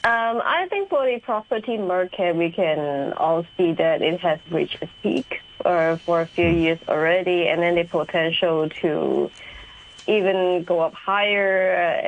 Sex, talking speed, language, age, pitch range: female, 165 wpm, English, 20-39, 165-195 Hz